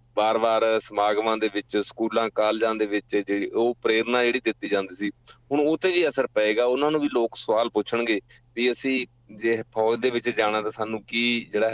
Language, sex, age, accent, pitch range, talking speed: English, male, 30-49, Indian, 110-125 Hz, 195 wpm